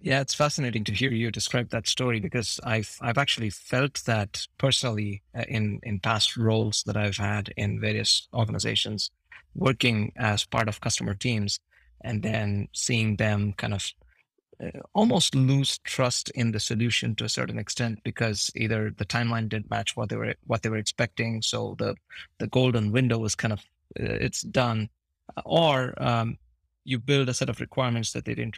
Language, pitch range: English, 105-125 Hz